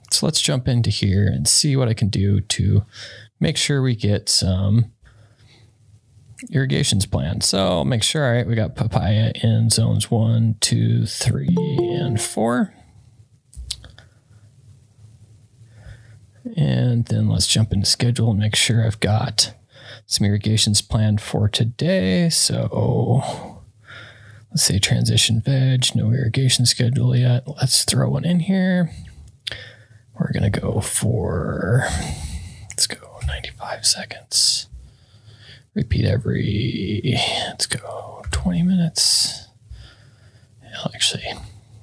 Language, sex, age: English, male, 30-49